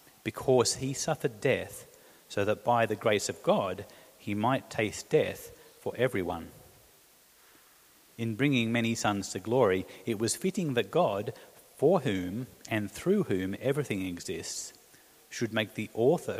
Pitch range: 105-135 Hz